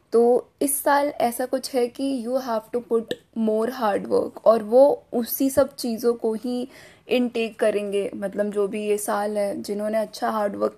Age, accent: 10-29, native